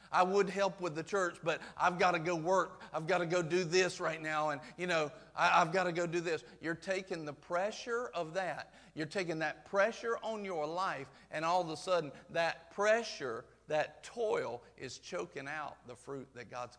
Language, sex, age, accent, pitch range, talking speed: English, male, 50-69, American, 135-170 Hz, 205 wpm